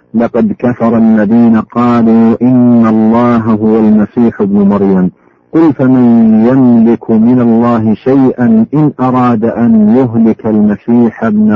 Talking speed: 115 wpm